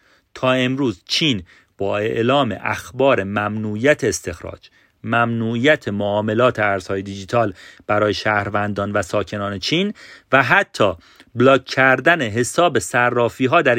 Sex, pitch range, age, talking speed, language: male, 110-150 Hz, 40-59, 110 wpm, Persian